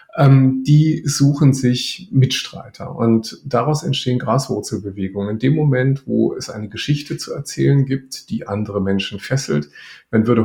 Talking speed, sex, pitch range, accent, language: 145 wpm, male, 100-130 Hz, German, German